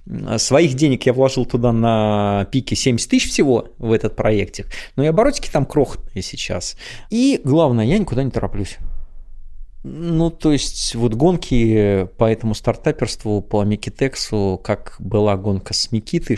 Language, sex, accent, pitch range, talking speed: Russian, male, native, 105-140 Hz, 145 wpm